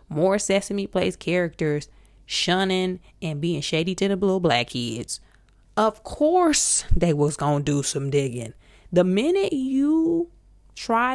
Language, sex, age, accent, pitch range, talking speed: English, female, 20-39, American, 160-205 Hz, 140 wpm